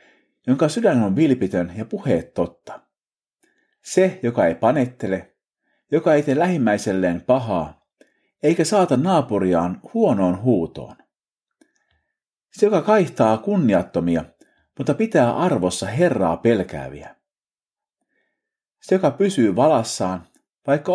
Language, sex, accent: Finnish, male, native